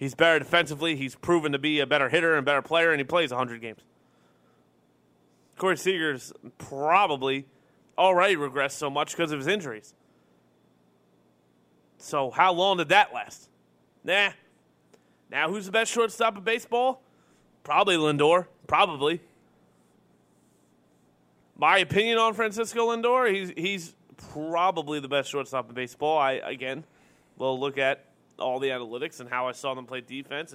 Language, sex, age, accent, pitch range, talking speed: English, male, 30-49, American, 125-165 Hz, 145 wpm